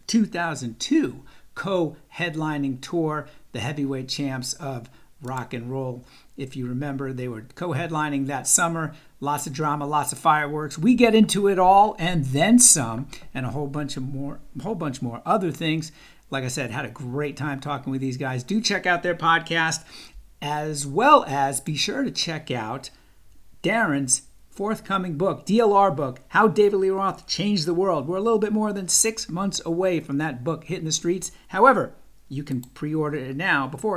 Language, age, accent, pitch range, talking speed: English, 50-69, American, 140-190 Hz, 185 wpm